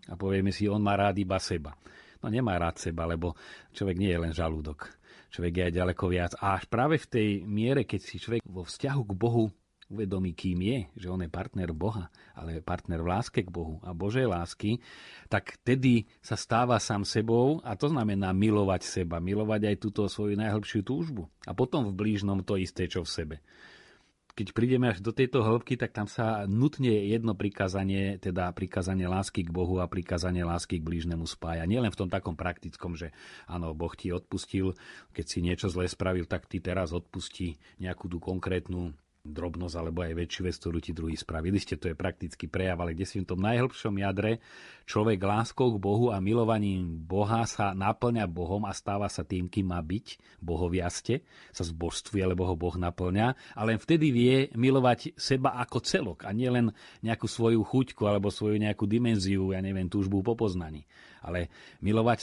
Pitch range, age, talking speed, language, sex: 90-115 Hz, 40-59, 185 wpm, Slovak, male